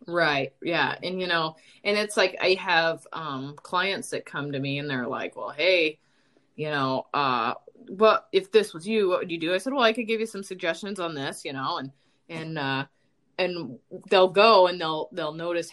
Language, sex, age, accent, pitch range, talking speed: English, female, 20-39, American, 160-220 Hz, 215 wpm